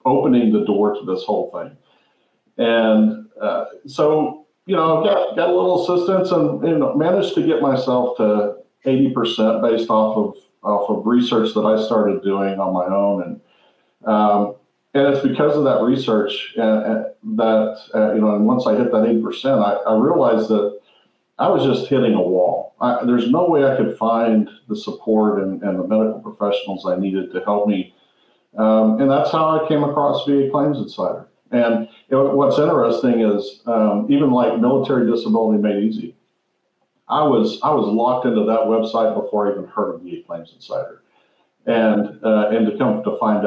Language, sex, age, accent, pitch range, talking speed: English, male, 50-69, American, 105-125 Hz, 185 wpm